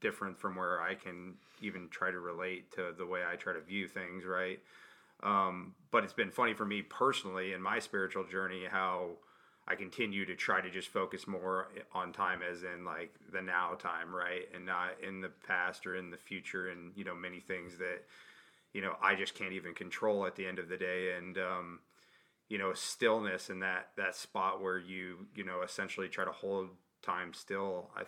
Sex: male